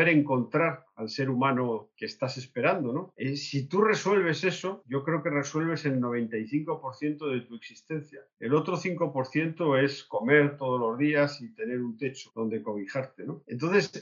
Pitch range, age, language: 120-160 Hz, 50-69, Spanish